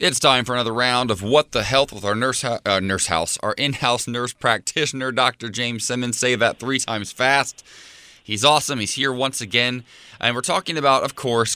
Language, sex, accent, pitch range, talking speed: English, male, American, 95-115 Hz, 210 wpm